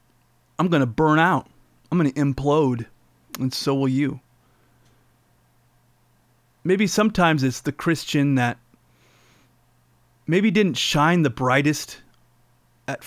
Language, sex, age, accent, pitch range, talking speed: English, male, 30-49, American, 120-155 Hz, 115 wpm